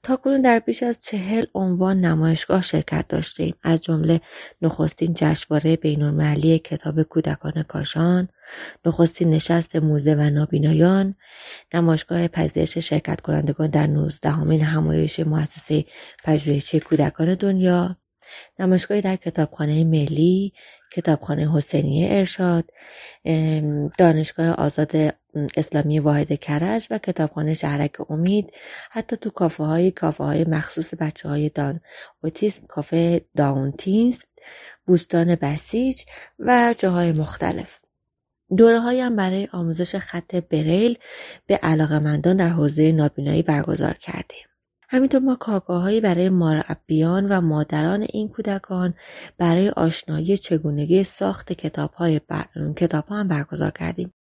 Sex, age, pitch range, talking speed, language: female, 20-39, 155-185 Hz, 115 wpm, Persian